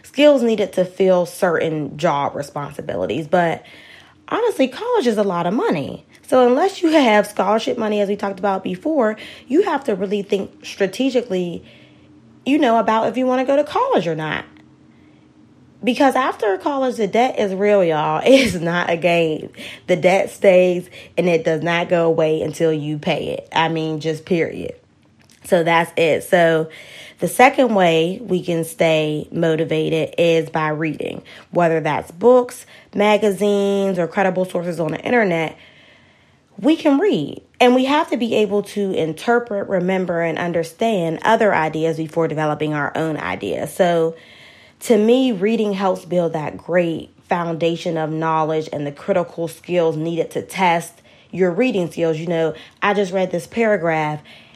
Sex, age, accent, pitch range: female, 20-39, American, 165-220 Hz